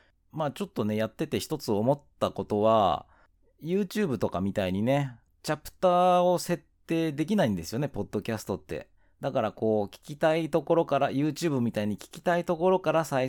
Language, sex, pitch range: Japanese, male, 100-145 Hz